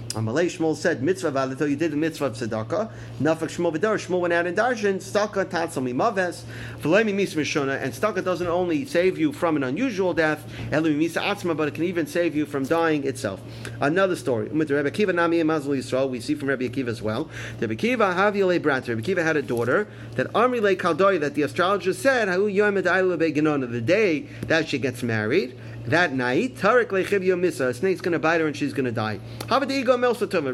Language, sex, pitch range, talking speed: English, male, 130-180 Hz, 185 wpm